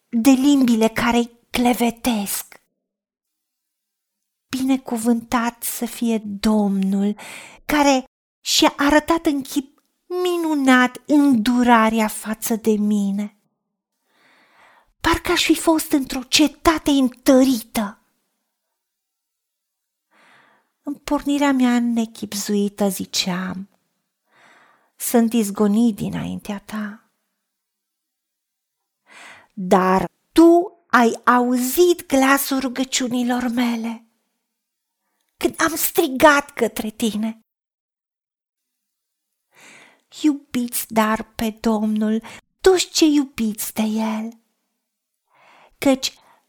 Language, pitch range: Romanian, 215-280 Hz